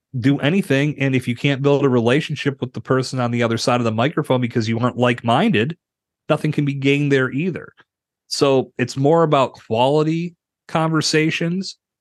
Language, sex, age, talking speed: English, male, 30-49, 175 wpm